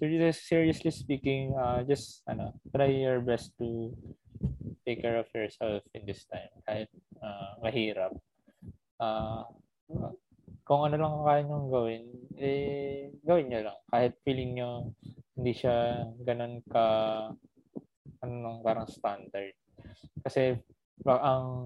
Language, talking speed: Filipino, 120 wpm